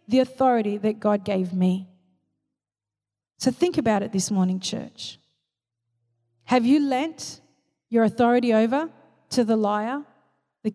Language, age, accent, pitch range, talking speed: English, 40-59, Australian, 200-255 Hz, 130 wpm